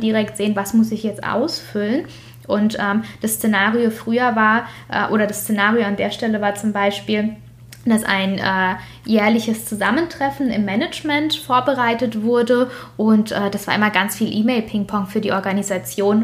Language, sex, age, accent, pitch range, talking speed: German, female, 10-29, German, 210-245 Hz, 160 wpm